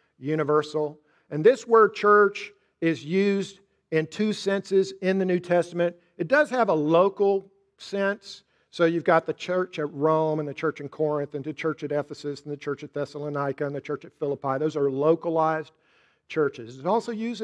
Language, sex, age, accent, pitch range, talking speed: English, male, 50-69, American, 155-225 Hz, 185 wpm